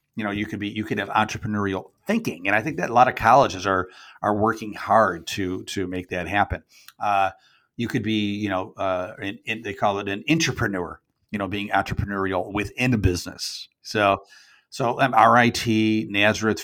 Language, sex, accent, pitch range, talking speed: English, male, American, 95-110 Hz, 185 wpm